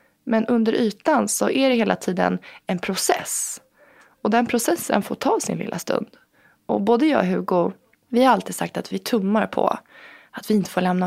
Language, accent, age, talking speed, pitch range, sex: Swedish, native, 20-39, 195 wpm, 195-250 Hz, female